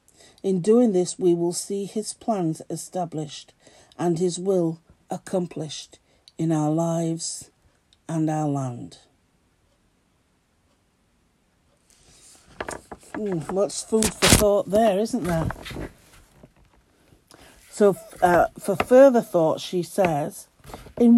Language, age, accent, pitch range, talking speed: English, 60-79, British, 150-180 Hz, 100 wpm